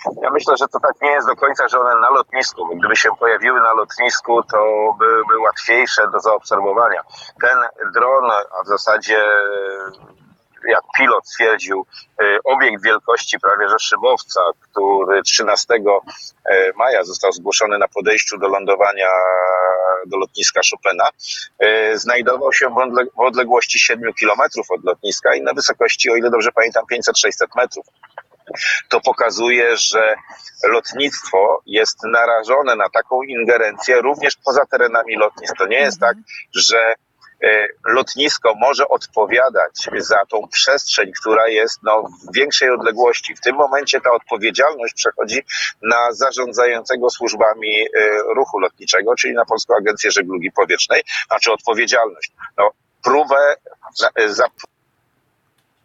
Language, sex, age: Polish, male, 30-49